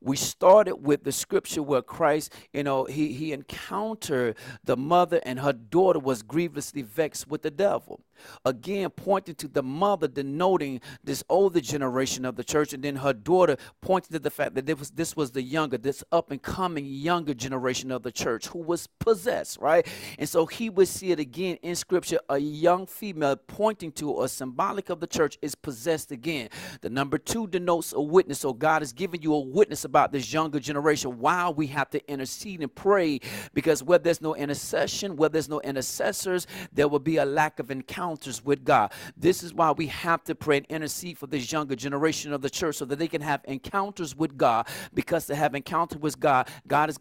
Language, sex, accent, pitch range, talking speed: English, male, American, 140-170 Hz, 200 wpm